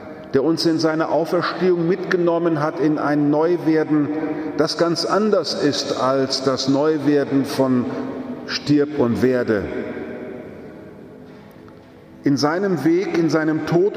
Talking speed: 115 wpm